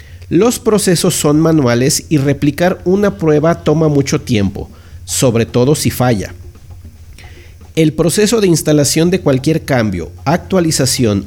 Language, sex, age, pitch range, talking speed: Spanish, male, 50-69, 110-170 Hz, 120 wpm